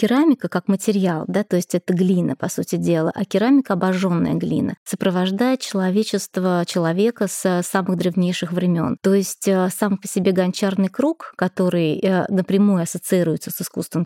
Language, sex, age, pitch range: Russian, female, 20-39, 185-215 Hz